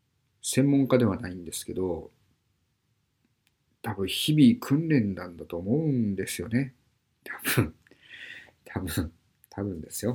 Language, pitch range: Japanese, 105-150 Hz